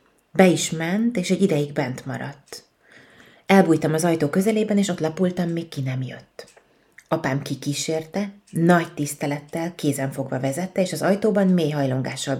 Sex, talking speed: female, 145 wpm